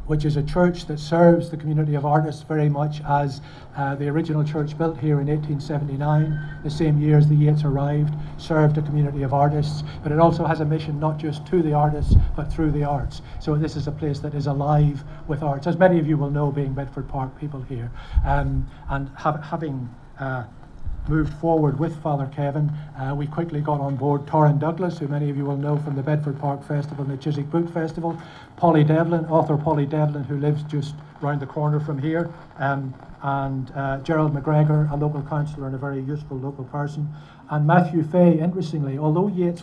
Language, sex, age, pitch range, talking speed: English, male, 60-79, 140-155 Hz, 205 wpm